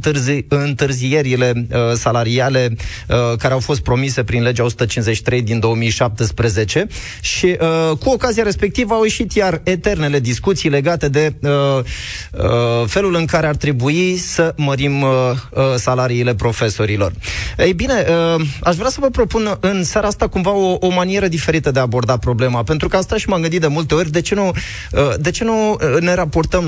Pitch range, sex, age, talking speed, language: 130-180 Hz, male, 20-39, 175 wpm, Romanian